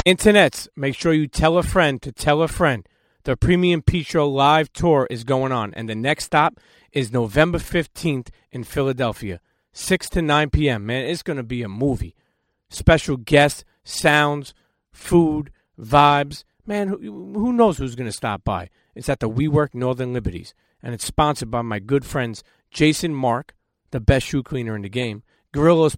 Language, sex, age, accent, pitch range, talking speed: English, male, 40-59, American, 115-155 Hz, 175 wpm